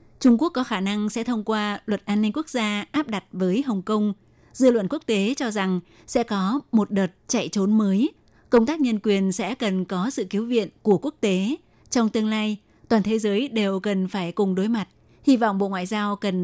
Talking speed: 225 wpm